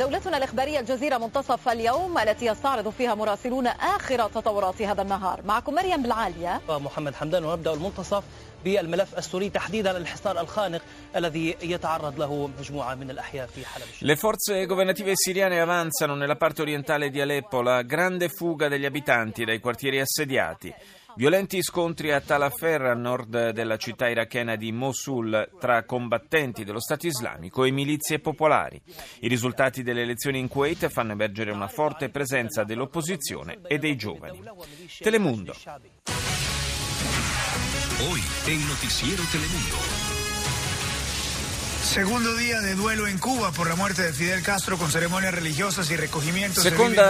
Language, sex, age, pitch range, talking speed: Italian, male, 30-49, 125-180 Hz, 70 wpm